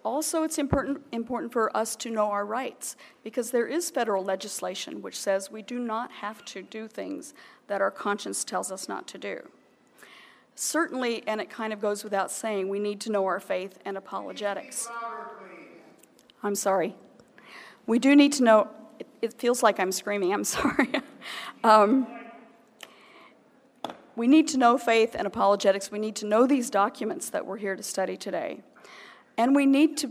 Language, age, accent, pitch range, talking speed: English, 40-59, American, 200-255 Hz, 175 wpm